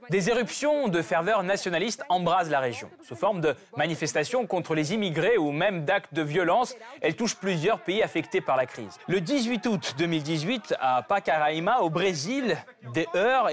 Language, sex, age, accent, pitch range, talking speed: French, male, 20-39, French, 160-215 Hz, 170 wpm